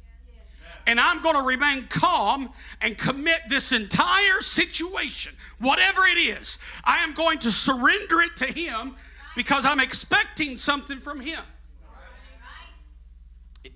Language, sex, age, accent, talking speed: English, male, 50-69, American, 125 wpm